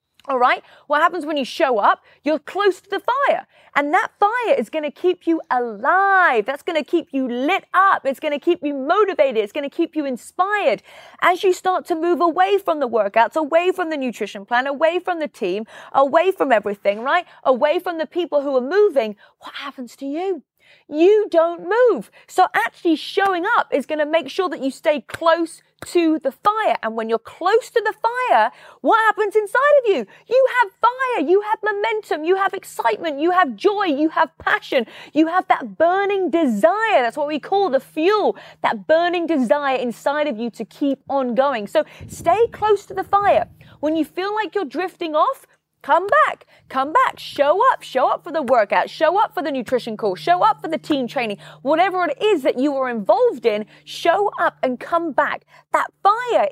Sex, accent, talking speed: female, British, 205 wpm